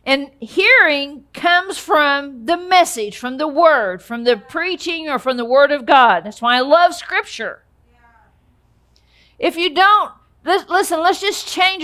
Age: 50-69